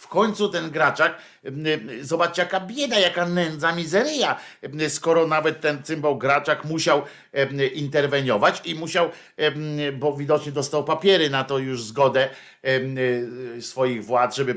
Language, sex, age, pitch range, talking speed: Polish, male, 50-69, 120-160 Hz, 125 wpm